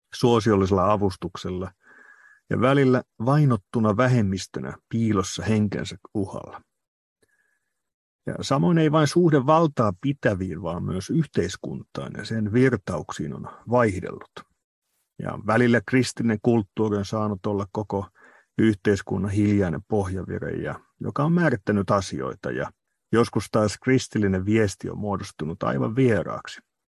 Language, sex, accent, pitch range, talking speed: Finnish, male, native, 100-125 Hz, 105 wpm